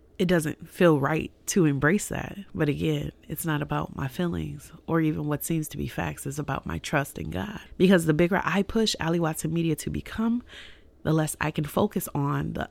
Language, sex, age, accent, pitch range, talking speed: English, female, 30-49, American, 140-170 Hz, 210 wpm